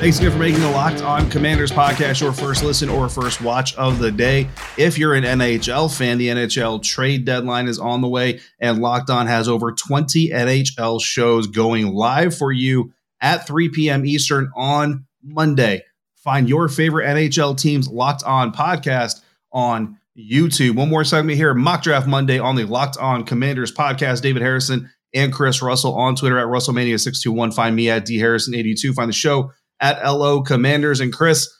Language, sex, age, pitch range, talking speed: English, male, 30-49, 115-145 Hz, 180 wpm